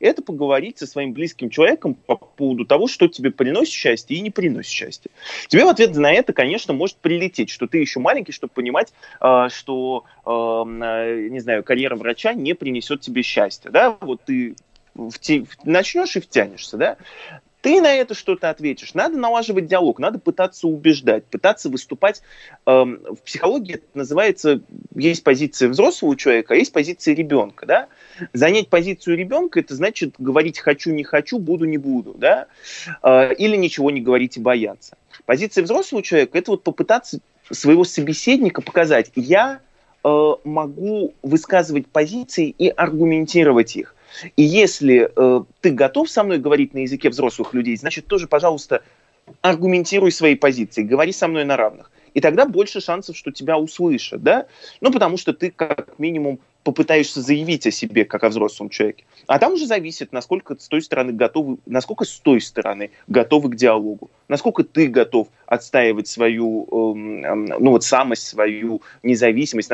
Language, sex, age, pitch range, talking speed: Russian, male, 20-39, 130-205 Hz, 155 wpm